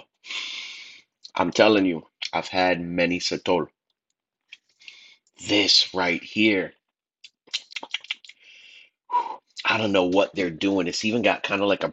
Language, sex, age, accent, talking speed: English, male, 30-49, American, 115 wpm